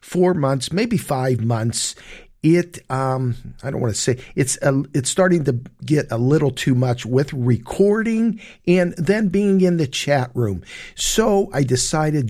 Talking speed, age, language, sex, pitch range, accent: 165 wpm, 50-69, English, male, 120-175 Hz, American